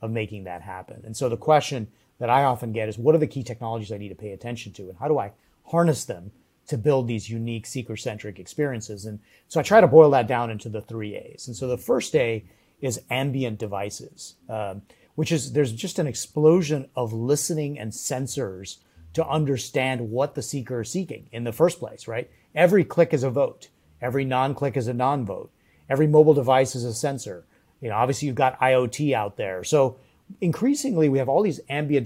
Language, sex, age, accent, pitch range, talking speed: English, male, 30-49, American, 115-150 Hz, 205 wpm